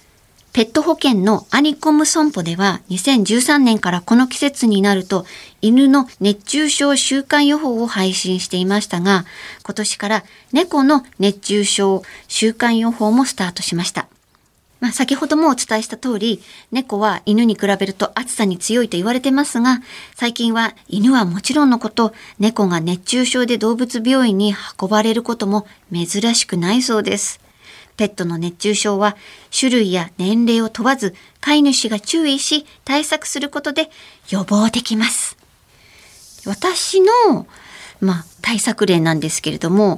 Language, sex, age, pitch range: Japanese, male, 40-59, 200-255 Hz